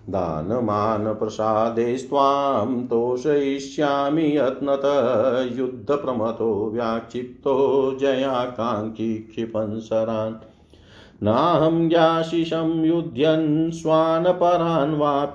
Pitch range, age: 110-140 Hz, 50-69